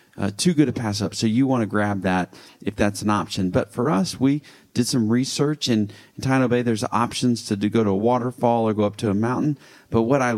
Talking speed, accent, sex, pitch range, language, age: 255 wpm, American, male, 100-125 Hz, English, 40-59